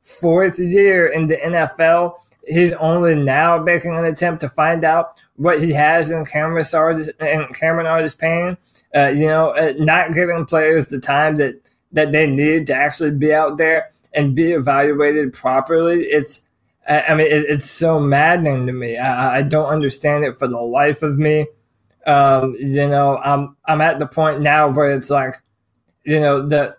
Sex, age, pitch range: male, 20-39, 140-160 Hz